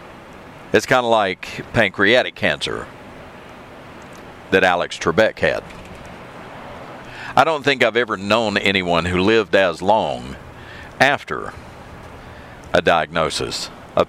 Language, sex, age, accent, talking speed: English, male, 50-69, American, 105 wpm